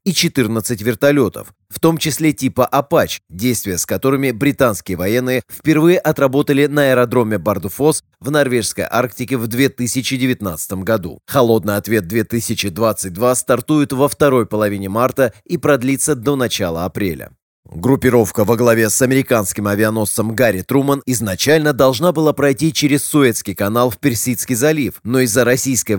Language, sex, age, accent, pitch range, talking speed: Russian, male, 30-49, native, 105-140 Hz, 135 wpm